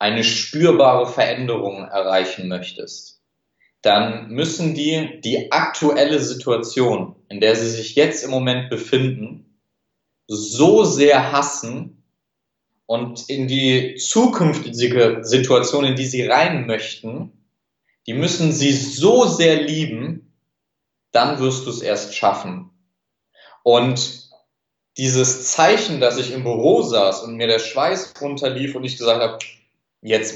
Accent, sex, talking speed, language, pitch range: German, male, 125 wpm, German, 115-140 Hz